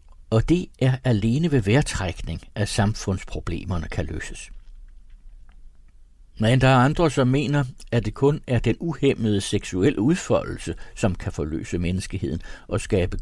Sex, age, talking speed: male, 60-79, 135 wpm